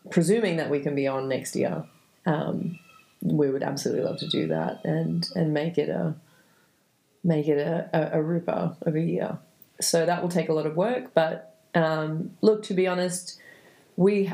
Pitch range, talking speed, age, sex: 150-175 Hz, 190 wpm, 30-49, female